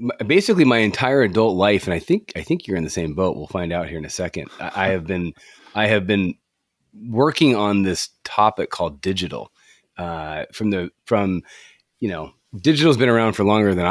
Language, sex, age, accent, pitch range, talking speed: English, male, 30-49, American, 90-105 Hz, 205 wpm